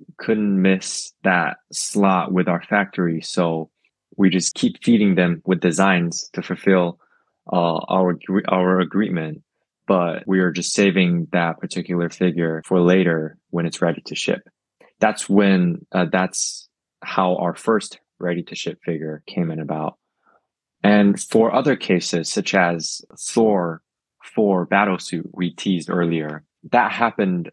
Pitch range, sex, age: 85-100 Hz, male, 20-39